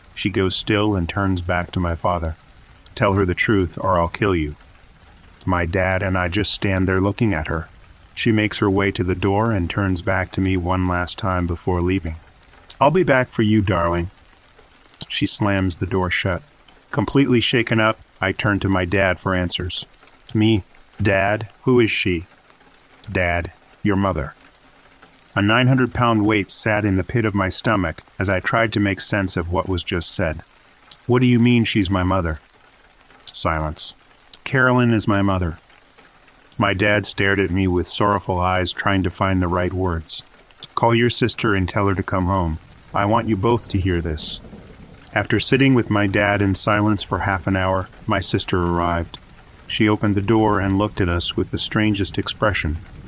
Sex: male